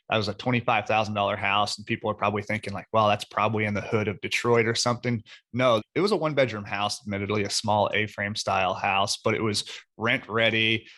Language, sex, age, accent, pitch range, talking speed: English, male, 30-49, American, 105-120 Hz, 215 wpm